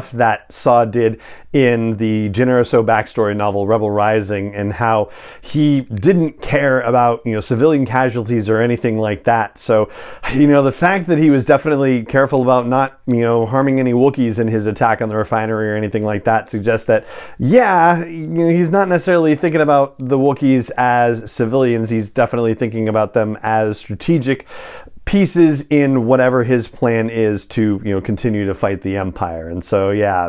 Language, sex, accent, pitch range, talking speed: English, male, American, 110-145 Hz, 170 wpm